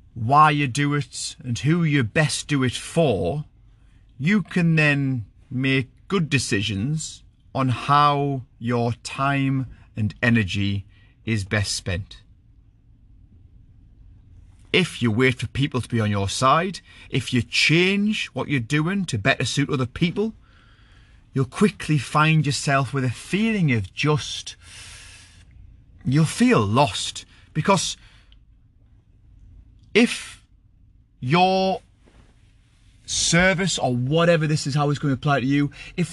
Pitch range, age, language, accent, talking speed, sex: 105-150 Hz, 30-49, English, British, 125 wpm, male